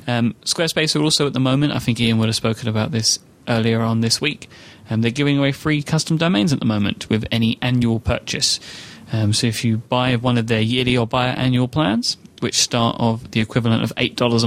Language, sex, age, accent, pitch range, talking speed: English, male, 30-49, British, 115-140 Hz, 220 wpm